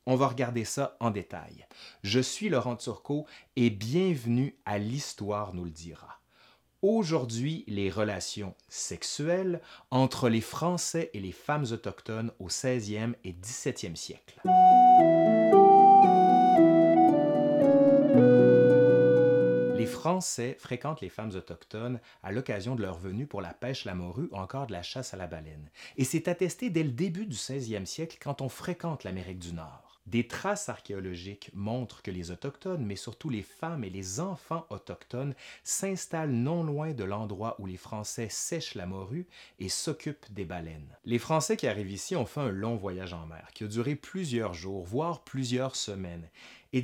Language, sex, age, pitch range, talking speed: French, male, 30-49, 100-155 Hz, 160 wpm